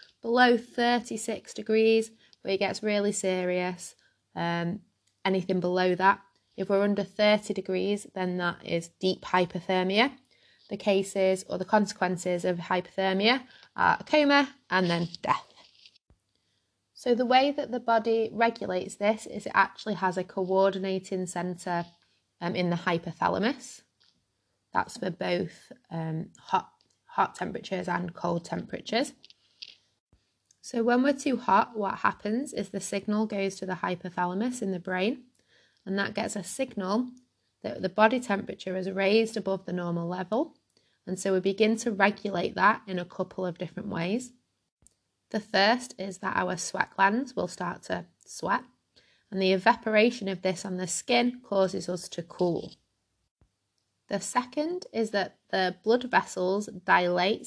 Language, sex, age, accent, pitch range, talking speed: English, female, 20-39, British, 180-220 Hz, 145 wpm